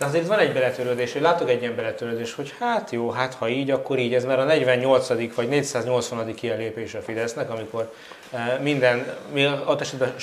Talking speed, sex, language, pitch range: 180 wpm, male, Hungarian, 120-150 Hz